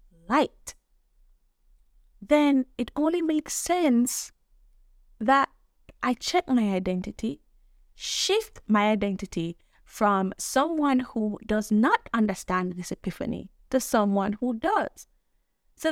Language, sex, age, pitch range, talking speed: English, female, 20-39, 180-260 Hz, 100 wpm